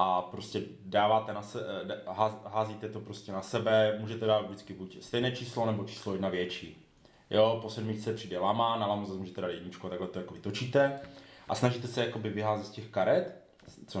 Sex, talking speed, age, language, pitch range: male, 185 wpm, 30-49, Czech, 100-120 Hz